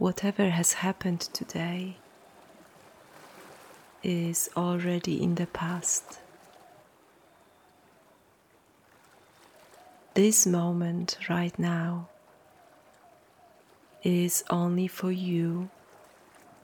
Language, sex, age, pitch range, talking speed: English, female, 30-49, 175-185 Hz, 60 wpm